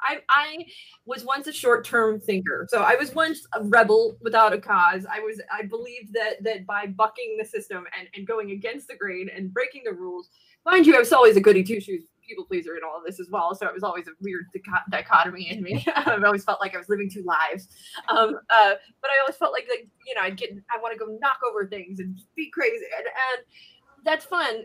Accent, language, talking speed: American, English, 245 wpm